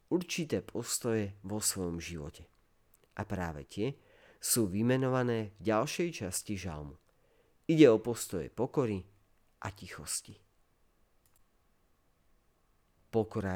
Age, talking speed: 40-59, 95 wpm